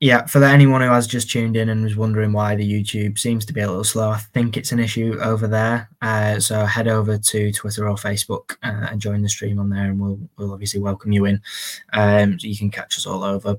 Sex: male